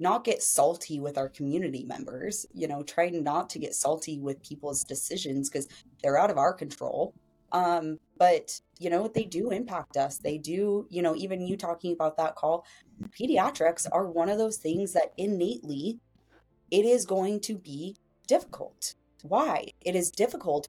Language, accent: English, American